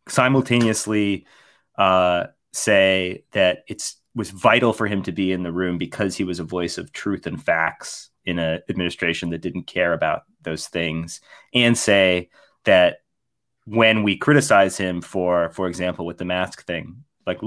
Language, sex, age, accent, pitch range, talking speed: English, male, 30-49, American, 90-115 Hz, 160 wpm